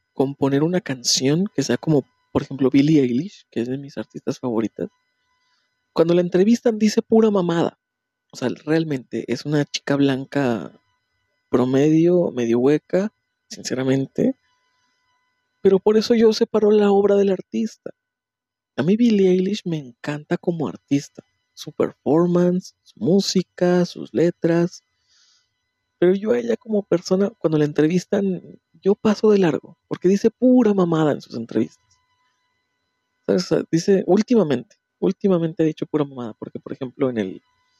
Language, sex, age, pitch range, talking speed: Spanish, male, 50-69, 135-205 Hz, 145 wpm